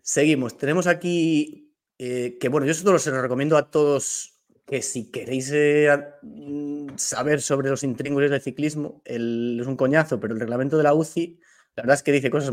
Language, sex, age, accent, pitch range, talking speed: Spanish, male, 30-49, Spanish, 130-160 Hz, 180 wpm